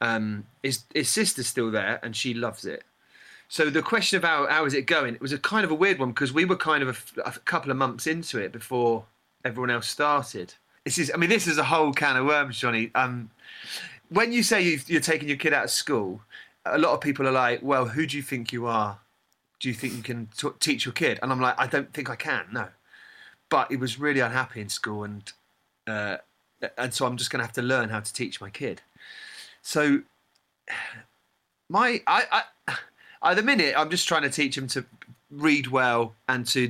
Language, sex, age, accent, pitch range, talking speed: English, male, 30-49, British, 120-145 Hz, 225 wpm